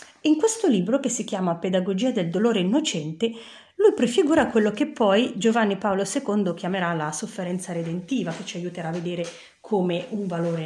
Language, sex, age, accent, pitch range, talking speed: Italian, female, 30-49, native, 175-260 Hz, 170 wpm